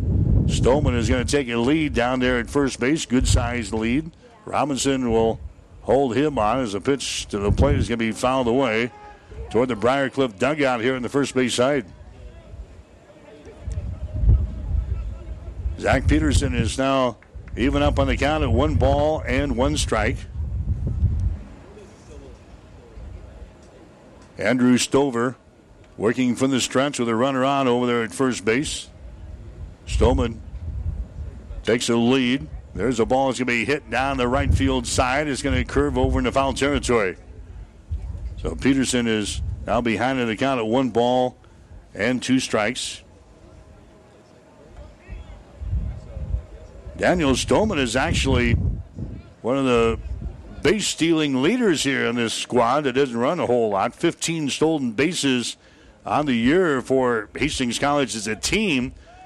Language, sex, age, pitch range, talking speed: English, male, 60-79, 90-130 Hz, 140 wpm